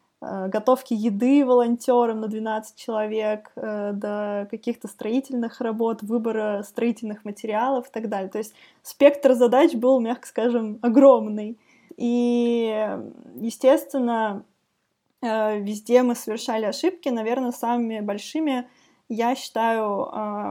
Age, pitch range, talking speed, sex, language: 20-39, 220-260 Hz, 100 wpm, female, Russian